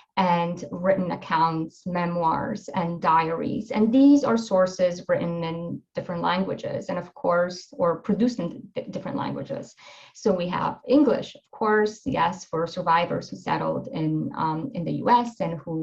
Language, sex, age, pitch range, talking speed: English, female, 30-49, 175-235 Hz, 155 wpm